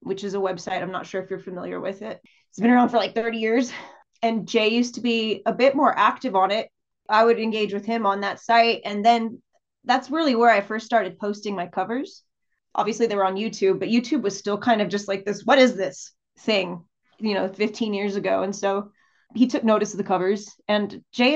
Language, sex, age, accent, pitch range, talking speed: English, female, 20-39, American, 200-250 Hz, 230 wpm